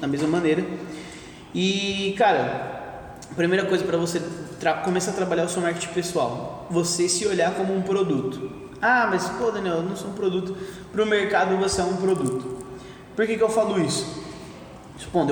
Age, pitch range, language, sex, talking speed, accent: 20-39, 150-185 Hz, Portuguese, male, 175 wpm, Brazilian